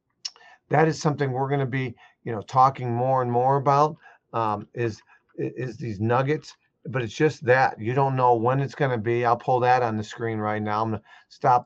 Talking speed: 205 wpm